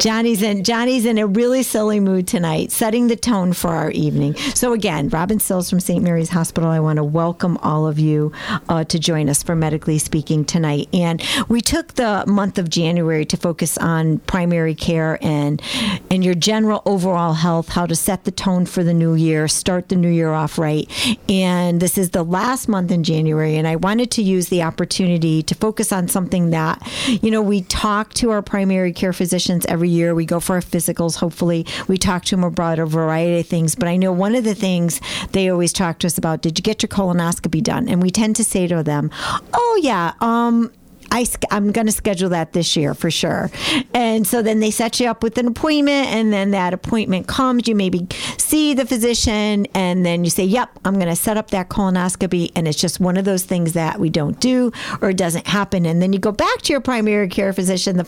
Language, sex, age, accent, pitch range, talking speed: English, female, 50-69, American, 165-210 Hz, 220 wpm